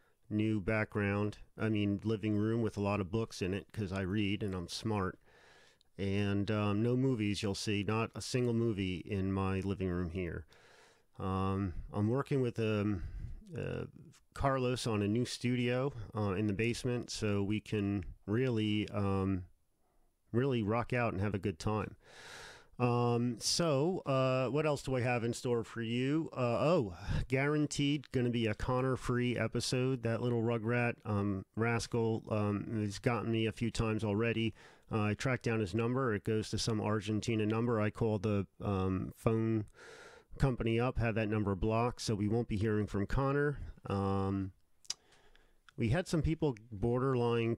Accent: American